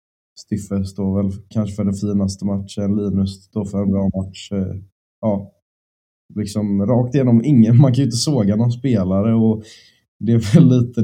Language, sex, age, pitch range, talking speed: Swedish, male, 20-39, 95-105 Hz, 170 wpm